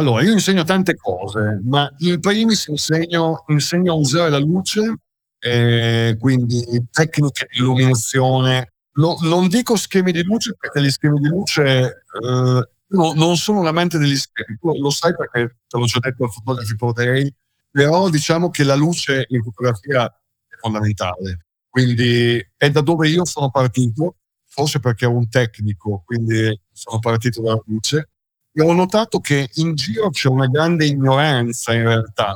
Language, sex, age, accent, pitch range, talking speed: English, male, 50-69, Italian, 120-165 Hz, 160 wpm